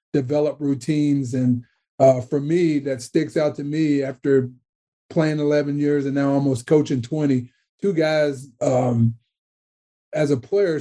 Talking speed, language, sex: 145 wpm, English, male